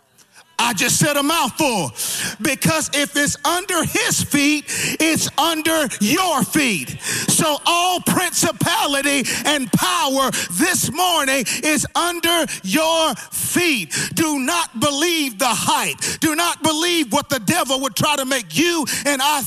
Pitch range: 245-300 Hz